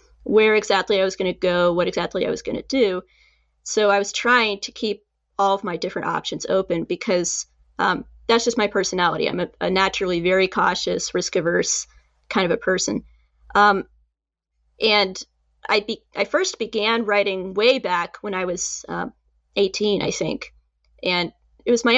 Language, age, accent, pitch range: English, 20-39, American, 175-220 Hz